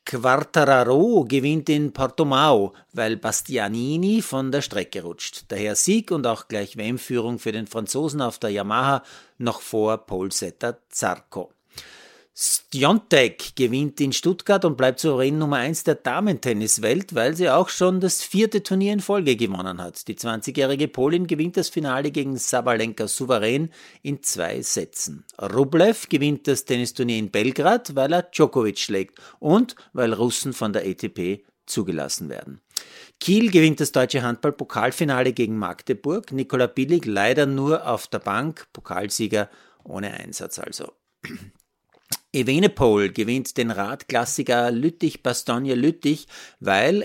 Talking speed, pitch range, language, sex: 135 wpm, 110-155 Hz, German, male